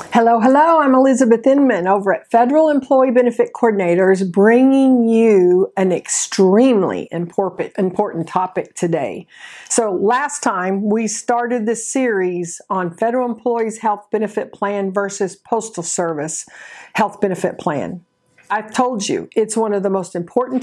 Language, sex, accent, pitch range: English, female, American, 195-255 Hz